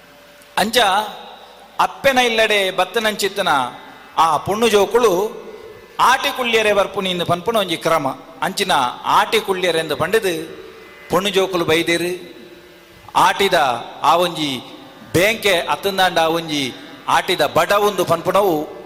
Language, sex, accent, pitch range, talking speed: Kannada, male, native, 160-200 Hz, 90 wpm